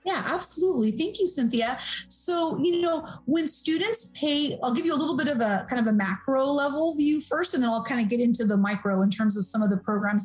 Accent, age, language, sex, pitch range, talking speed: American, 30-49, English, female, 215-270 Hz, 245 wpm